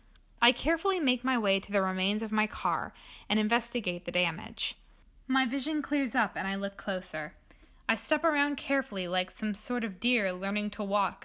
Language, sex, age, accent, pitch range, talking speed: English, female, 10-29, American, 195-245 Hz, 185 wpm